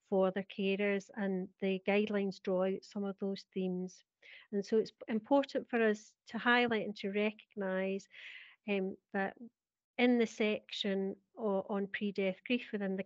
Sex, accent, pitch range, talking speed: female, British, 195-225 Hz, 145 wpm